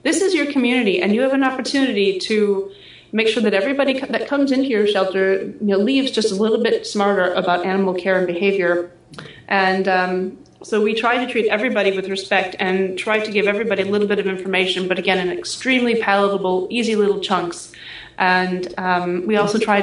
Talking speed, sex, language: 190 wpm, female, English